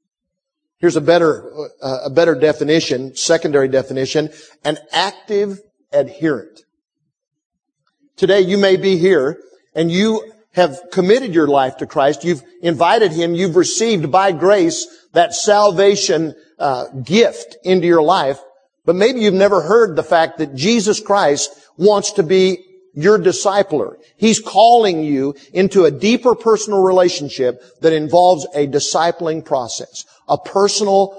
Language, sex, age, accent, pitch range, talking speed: English, male, 50-69, American, 150-195 Hz, 135 wpm